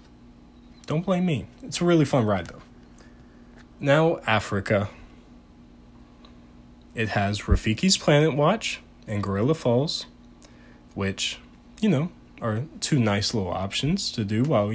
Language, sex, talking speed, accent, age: English, male, 120 wpm, American, 20-39